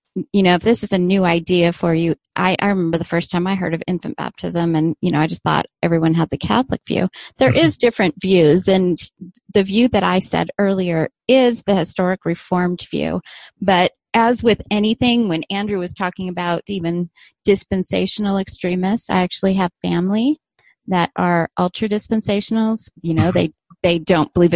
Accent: American